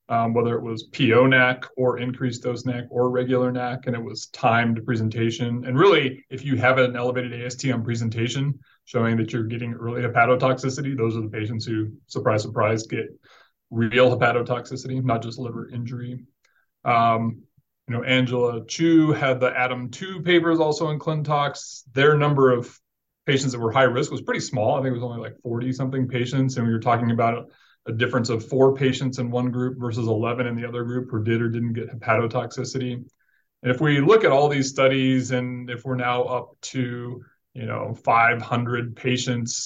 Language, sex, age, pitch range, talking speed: English, male, 20-39, 115-130 Hz, 185 wpm